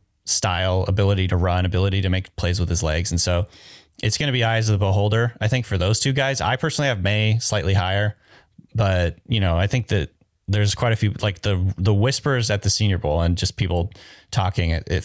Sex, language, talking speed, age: male, English, 225 wpm, 20-39